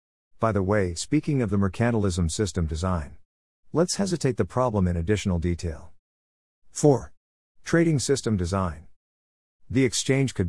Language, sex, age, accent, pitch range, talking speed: English, male, 50-69, American, 85-115 Hz, 130 wpm